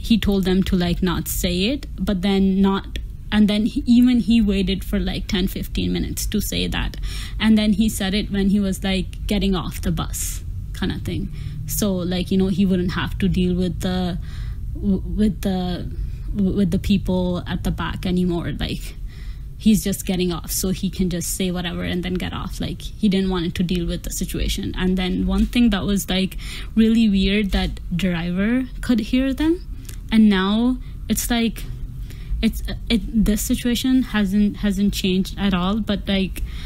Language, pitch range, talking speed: English, 180-205 Hz, 185 wpm